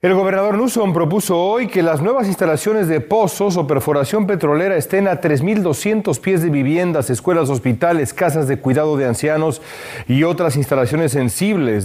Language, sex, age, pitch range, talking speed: Spanish, male, 40-59, 130-175 Hz, 155 wpm